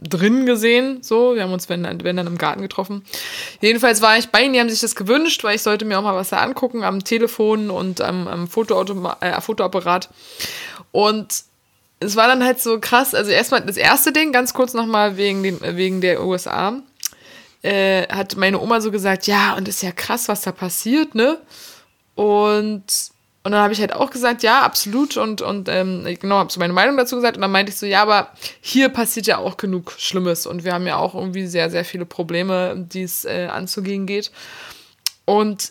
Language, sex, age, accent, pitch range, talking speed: German, female, 20-39, German, 185-230 Hz, 205 wpm